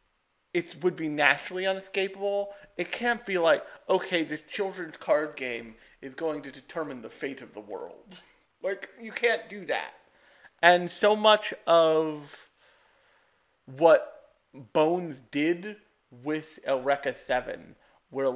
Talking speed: 125 wpm